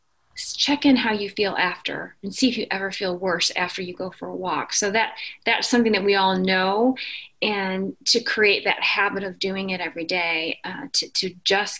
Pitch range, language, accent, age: 185-225 Hz, English, American, 30-49